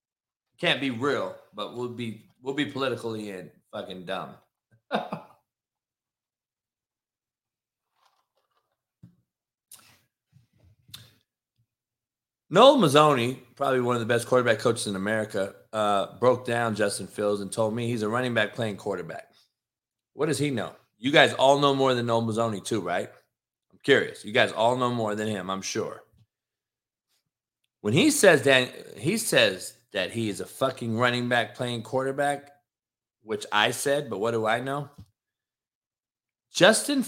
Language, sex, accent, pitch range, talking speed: English, male, American, 110-135 Hz, 140 wpm